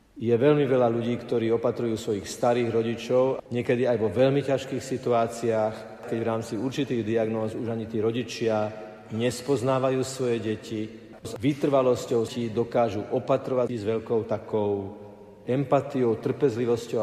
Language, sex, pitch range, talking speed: Slovak, male, 110-130 Hz, 130 wpm